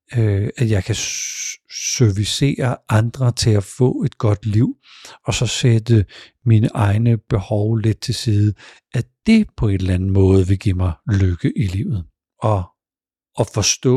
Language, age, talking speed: Danish, 50-69, 155 wpm